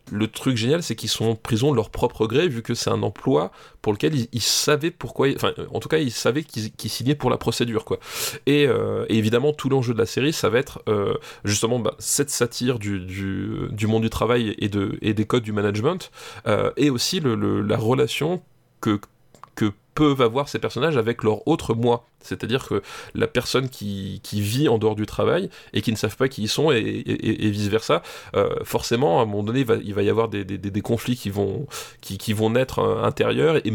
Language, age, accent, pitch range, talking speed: French, 20-39, French, 110-135 Hz, 235 wpm